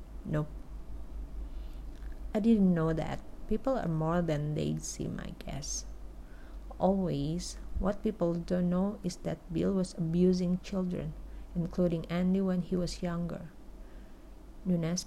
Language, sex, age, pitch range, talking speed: Indonesian, female, 30-49, 165-185 Hz, 125 wpm